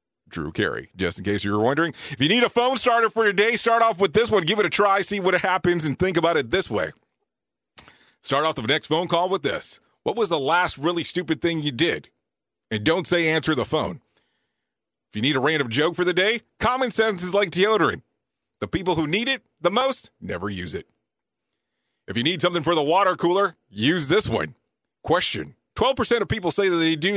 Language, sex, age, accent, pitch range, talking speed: English, male, 40-59, American, 155-200 Hz, 225 wpm